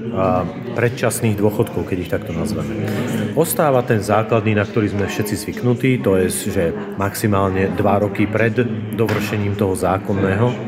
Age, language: 40-59, Slovak